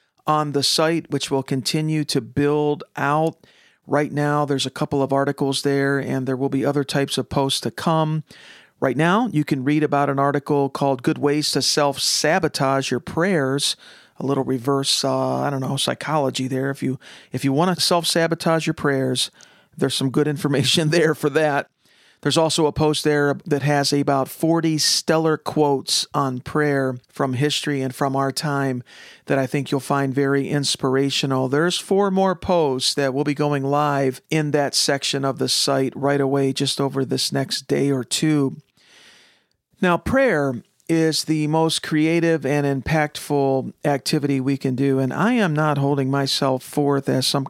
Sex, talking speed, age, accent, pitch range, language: male, 170 wpm, 40-59, American, 135-155 Hz, English